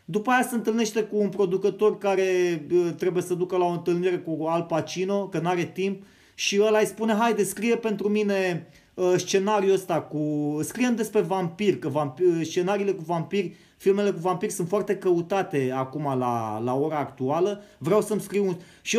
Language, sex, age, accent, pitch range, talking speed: Romanian, male, 30-49, native, 175-215 Hz, 175 wpm